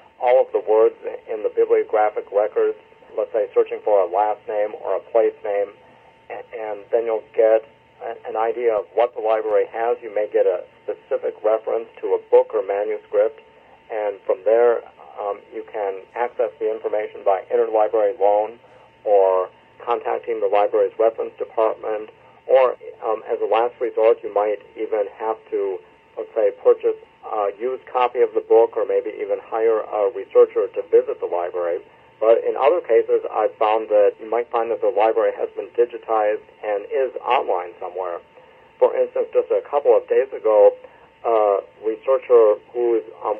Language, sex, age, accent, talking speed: English, male, 50-69, American, 175 wpm